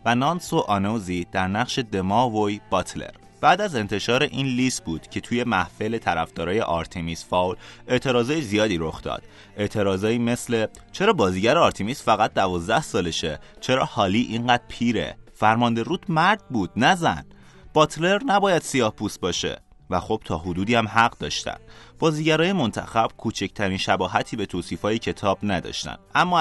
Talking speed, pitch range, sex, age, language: 140 wpm, 90-120 Hz, male, 30-49, Persian